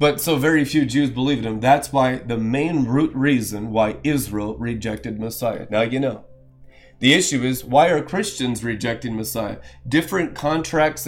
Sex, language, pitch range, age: male, English, 125-160 Hz, 30-49